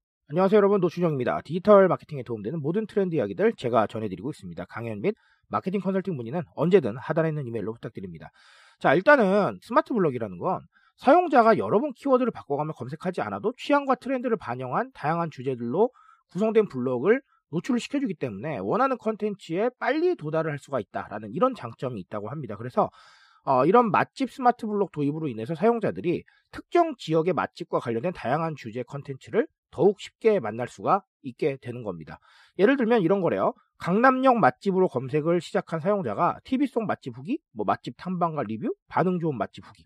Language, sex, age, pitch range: Korean, male, 40-59, 135-230 Hz